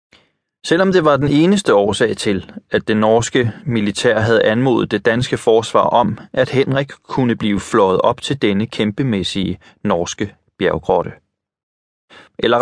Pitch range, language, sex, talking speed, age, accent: 100-130 Hz, Danish, male, 140 wpm, 30-49, native